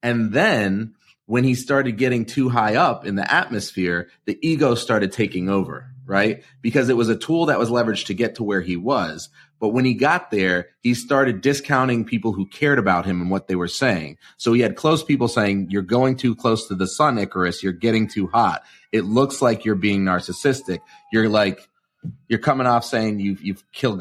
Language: English